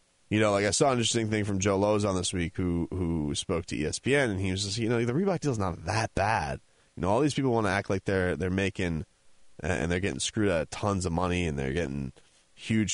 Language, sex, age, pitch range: English, male, 30-49, 85-105 Hz